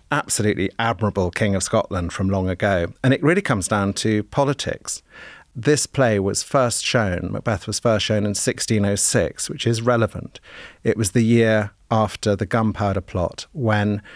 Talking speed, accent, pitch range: 160 wpm, British, 100-125 Hz